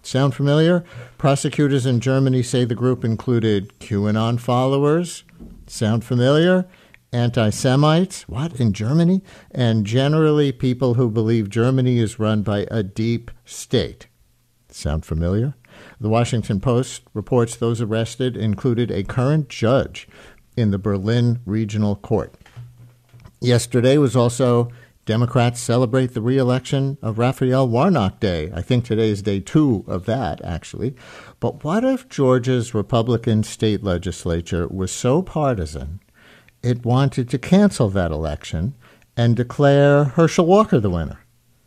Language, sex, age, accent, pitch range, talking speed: English, male, 50-69, American, 110-130 Hz, 125 wpm